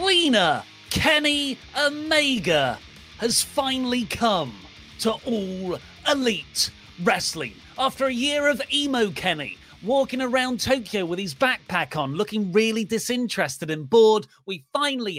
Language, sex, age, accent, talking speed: English, male, 30-49, British, 120 wpm